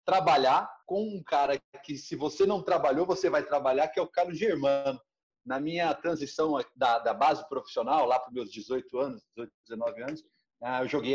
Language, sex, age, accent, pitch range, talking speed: Portuguese, male, 30-49, Brazilian, 155-220 Hz, 180 wpm